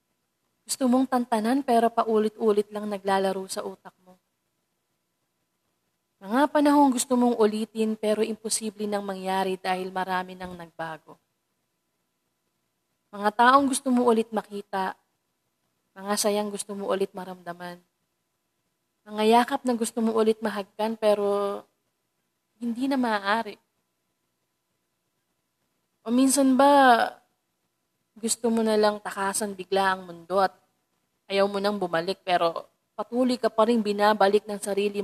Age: 20-39